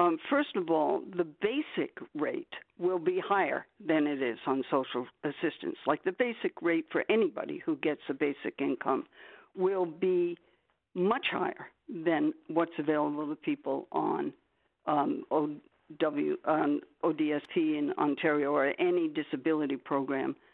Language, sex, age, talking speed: English, female, 60-79, 135 wpm